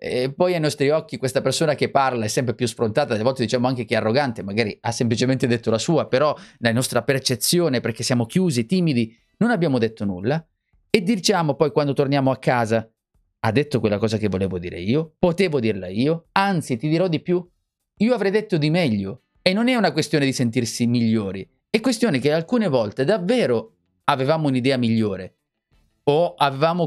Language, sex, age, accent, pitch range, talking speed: Italian, male, 30-49, native, 115-150 Hz, 190 wpm